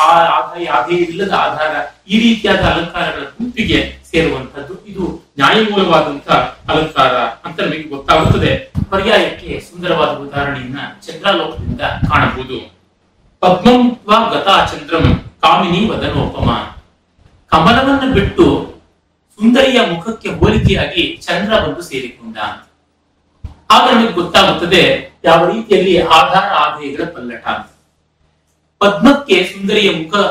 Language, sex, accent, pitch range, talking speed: Kannada, male, native, 145-205 Hz, 80 wpm